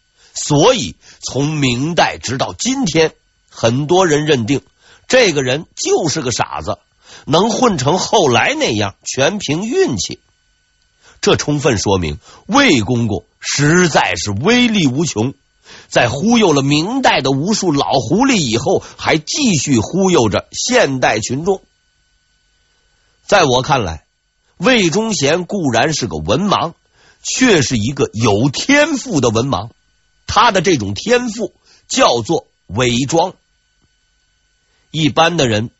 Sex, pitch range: male, 115-185 Hz